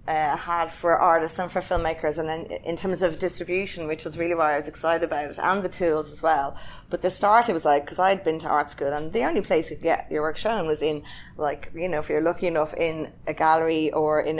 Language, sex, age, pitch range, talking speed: English, female, 30-49, 150-170 Hz, 265 wpm